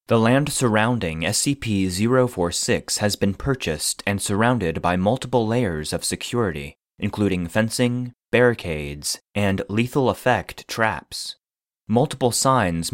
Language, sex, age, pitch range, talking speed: English, male, 30-49, 90-120 Hz, 100 wpm